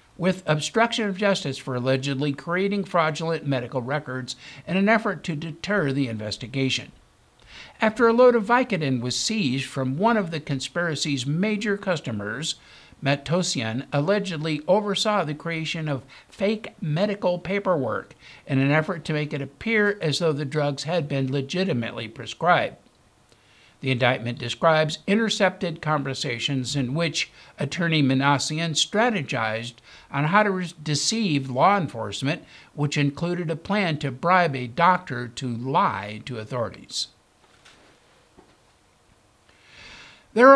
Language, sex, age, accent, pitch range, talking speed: English, male, 60-79, American, 135-190 Hz, 125 wpm